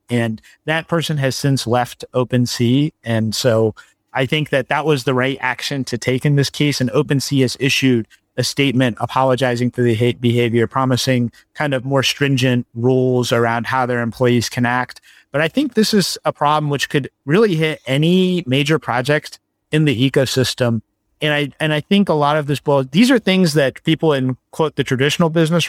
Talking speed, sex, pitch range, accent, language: 190 wpm, male, 125-150 Hz, American, English